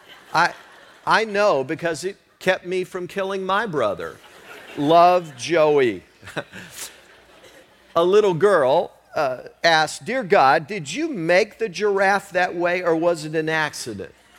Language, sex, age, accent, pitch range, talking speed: English, male, 50-69, American, 120-185 Hz, 135 wpm